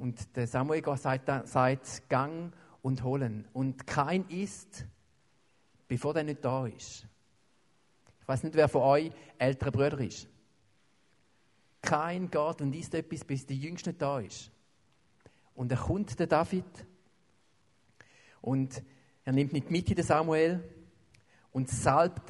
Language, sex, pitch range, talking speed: English, male, 125-160 Hz, 135 wpm